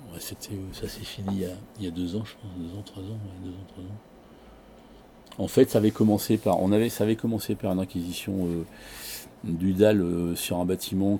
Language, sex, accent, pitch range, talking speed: French, male, French, 90-105 Hz, 230 wpm